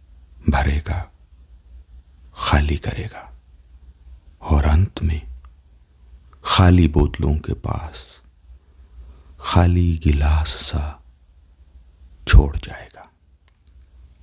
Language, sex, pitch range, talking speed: Hindi, male, 70-80 Hz, 65 wpm